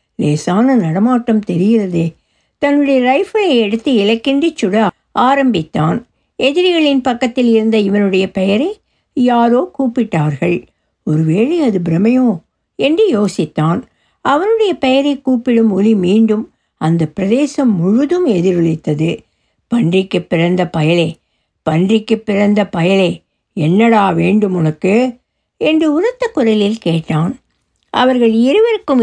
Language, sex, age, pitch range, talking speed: Tamil, female, 60-79, 180-255 Hz, 95 wpm